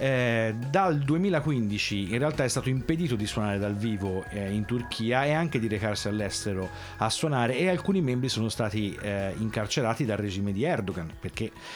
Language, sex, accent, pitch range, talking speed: Italian, male, native, 105-135 Hz, 175 wpm